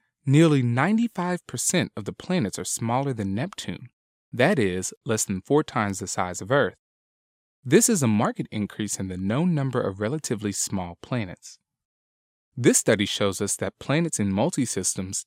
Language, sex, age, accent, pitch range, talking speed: English, male, 20-39, American, 100-150 Hz, 155 wpm